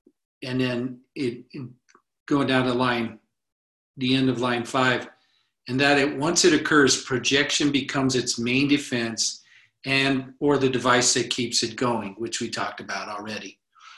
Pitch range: 120-140 Hz